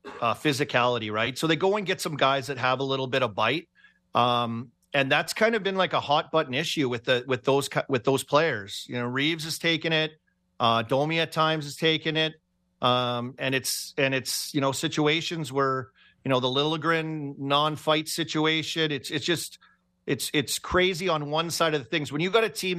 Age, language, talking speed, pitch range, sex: 40-59, English, 210 wpm, 130-155 Hz, male